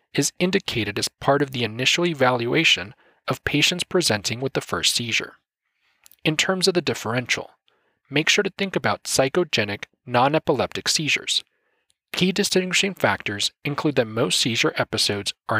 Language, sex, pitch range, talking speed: English, male, 115-175 Hz, 140 wpm